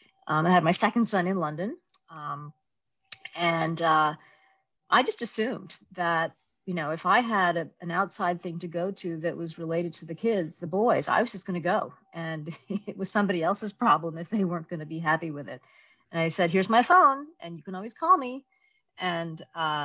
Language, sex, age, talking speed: English, female, 40-59, 210 wpm